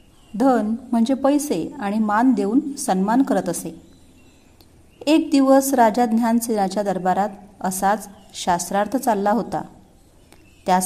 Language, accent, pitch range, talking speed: Marathi, native, 200-260 Hz, 105 wpm